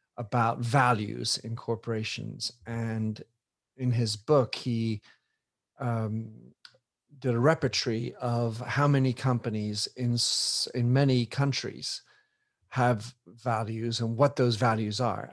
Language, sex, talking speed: English, male, 110 wpm